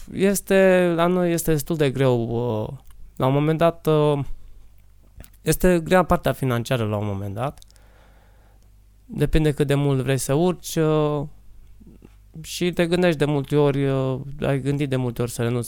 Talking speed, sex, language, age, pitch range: 150 wpm, male, Romanian, 20-39, 115-150 Hz